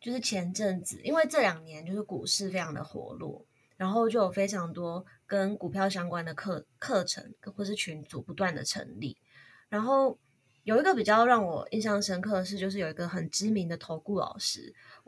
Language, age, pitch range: Chinese, 20-39, 175-210 Hz